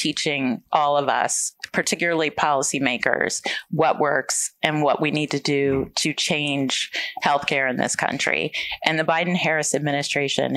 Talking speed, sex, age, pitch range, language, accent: 135 wpm, female, 30-49, 145-170 Hz, English, American